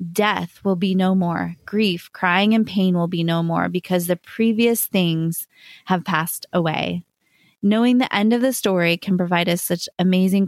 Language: English